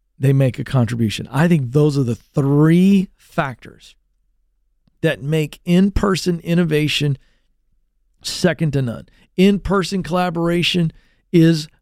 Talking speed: 115 wpm